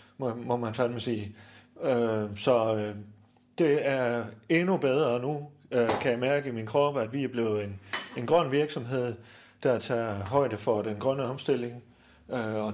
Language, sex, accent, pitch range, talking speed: Danish, male, native, 110-135 Hz, 150 wpm